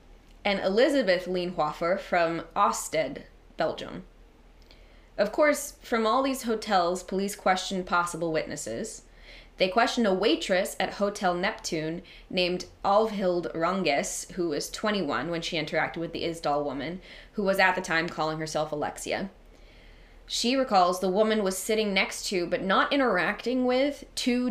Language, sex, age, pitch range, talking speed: English, female, 20-39, 175-210 Hz, 140 wpm